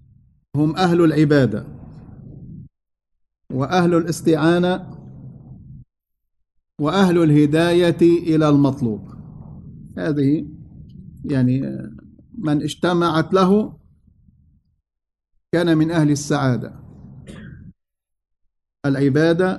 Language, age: English, 50-69